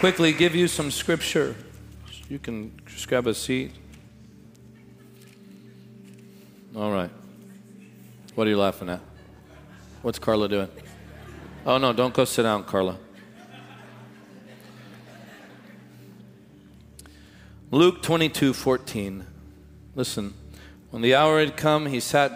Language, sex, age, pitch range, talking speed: English, male, 40-59, 105-125 Hz, 105 wpm